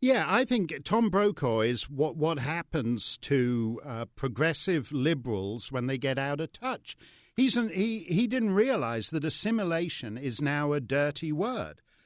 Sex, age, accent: male, 50-69, British